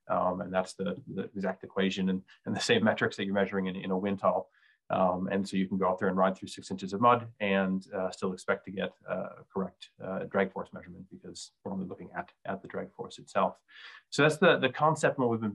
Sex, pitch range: male, 95-100 Hz